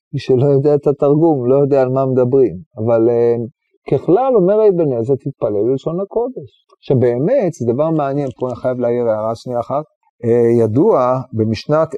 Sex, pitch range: male, 120-160 Hz